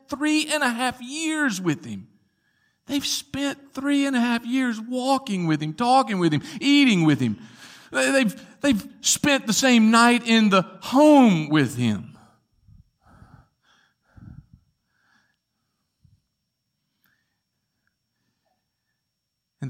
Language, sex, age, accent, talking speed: English, male, 50-69, American, 105 wpm